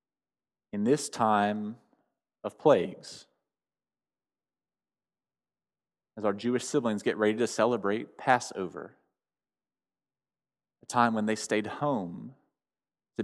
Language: English